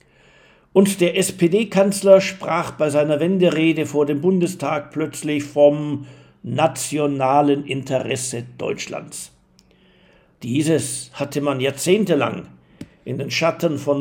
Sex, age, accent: male, 60-79, German